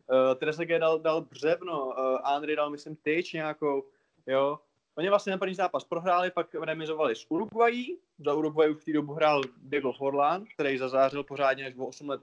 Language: English